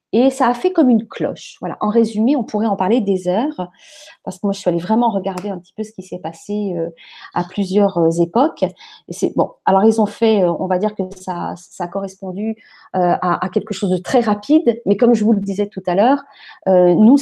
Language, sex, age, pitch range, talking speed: French, female, 30-49, 190-245 Hz, 240 wpm